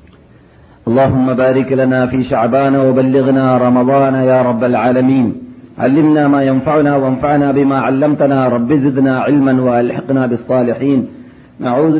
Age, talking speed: 40-59, 110 wpm